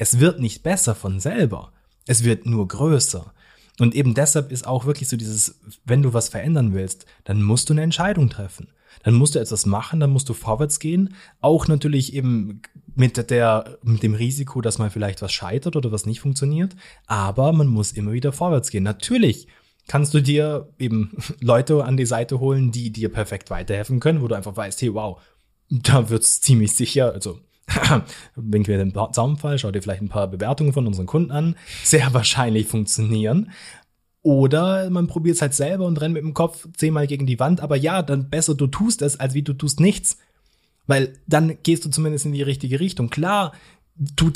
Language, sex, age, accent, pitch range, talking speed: German, male, 20-39, German, 115-150 Hz, 195 wpm